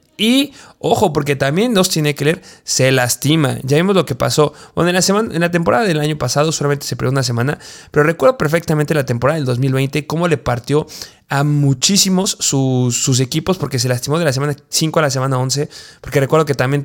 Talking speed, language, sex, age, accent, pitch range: 205 wpm, Spanish, male, 20-39, Mexican, 130-155 Hz